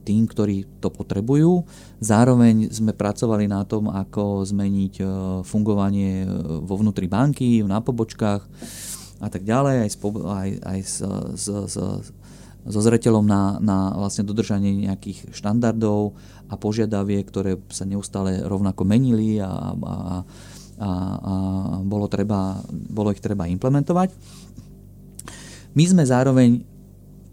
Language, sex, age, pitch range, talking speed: English, male, 30-49, 100-115 Hz, 115 wpm